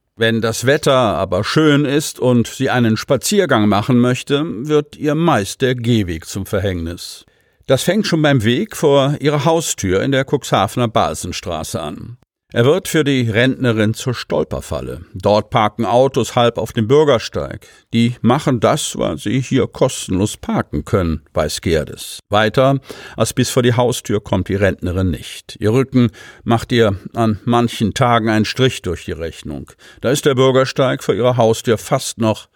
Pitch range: 100-130 Hz